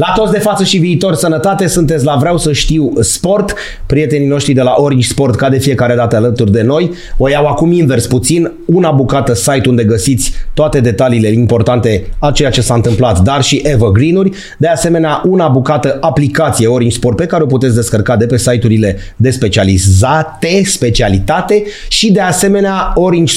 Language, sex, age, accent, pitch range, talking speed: Romanian, male, 30-49, native, 120-170 Hz, 175 wpm